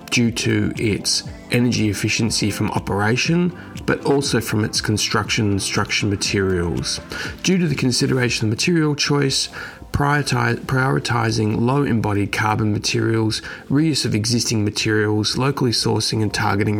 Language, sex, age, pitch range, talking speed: English, male, 30-49, 105-125 Hz, 125 wpm